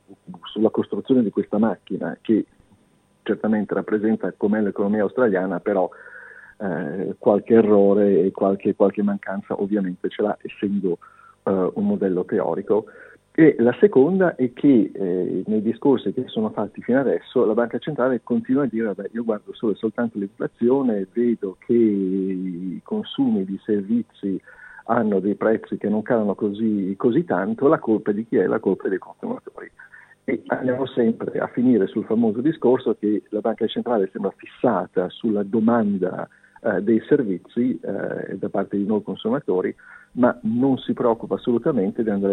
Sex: male